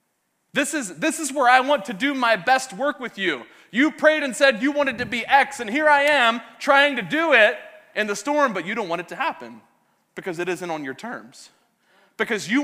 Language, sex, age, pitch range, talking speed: English, male, 30-49, 160-245 Hz, 235 wpm